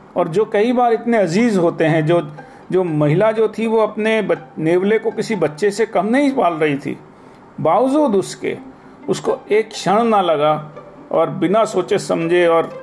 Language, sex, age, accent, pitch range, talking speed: Hindi, male, 40-59, native, 150-215 Hz, 175 wpm